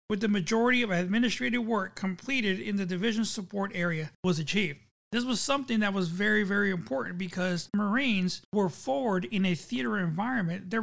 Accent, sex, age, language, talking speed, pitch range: American, male, 40-59, English, 170 wpm, 185-230 Hz